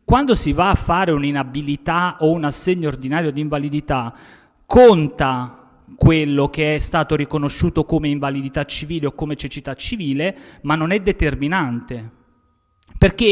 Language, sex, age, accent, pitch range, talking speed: Italian, male, 30-49, native, 140-180 Hz, 135 wpm